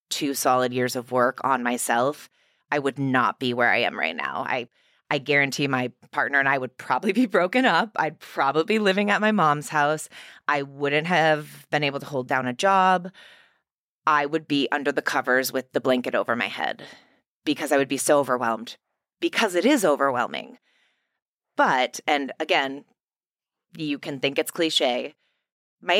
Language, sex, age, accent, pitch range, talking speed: English, female, 20-39, American, 130-160 Hz, 180 wpm